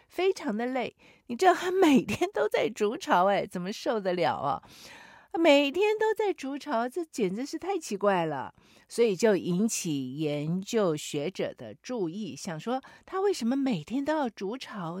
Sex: female